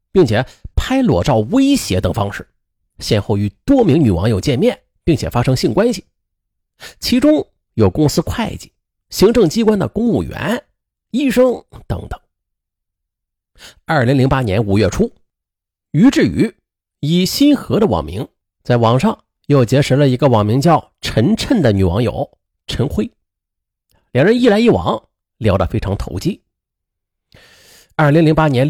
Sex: male